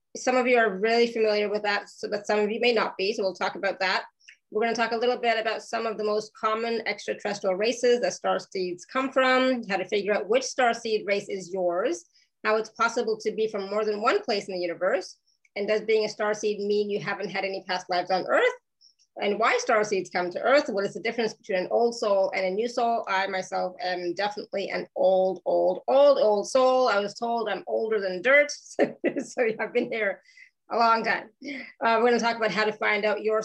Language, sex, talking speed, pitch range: English, female, 230 wpm, 195-230 Hz